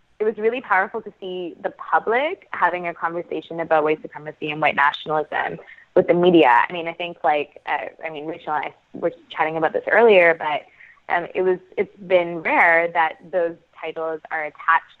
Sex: female